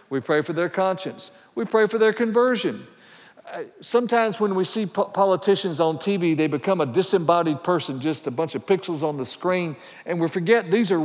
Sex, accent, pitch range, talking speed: male, American, 165-195 Hz, 195 wpm